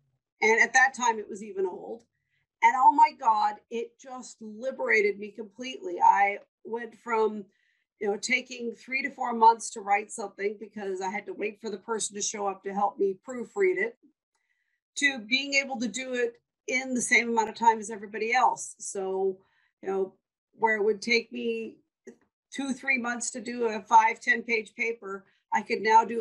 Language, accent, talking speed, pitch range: English, American, 190 wpm, 210-275 Hz